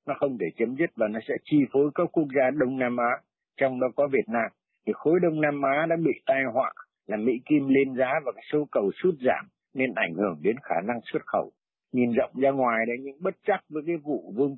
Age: 60-79